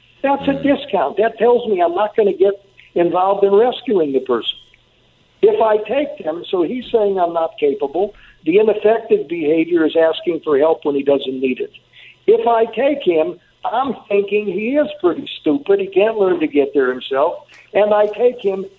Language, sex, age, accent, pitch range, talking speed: English, male, 60-79, American, 155-235 Hz, 190 wpm